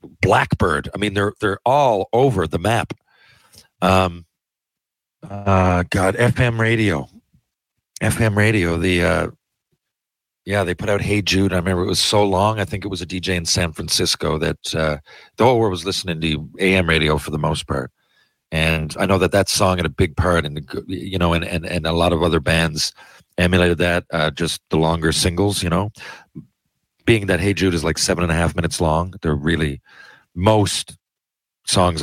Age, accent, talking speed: 50-69, American, 185 wpm